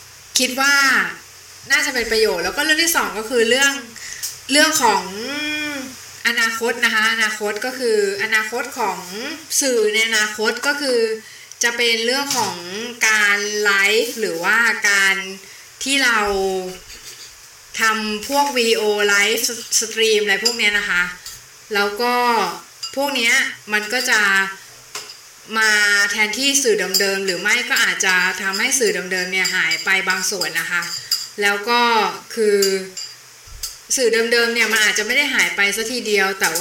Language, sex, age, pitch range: Thai, female, 20-39, 195-240 Hz